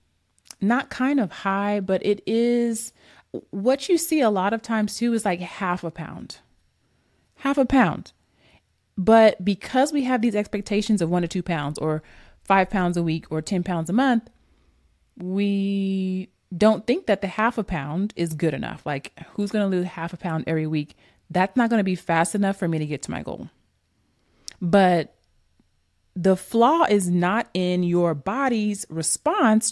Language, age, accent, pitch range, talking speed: English, 30-49, American, 170-225 Hz, 180 wpm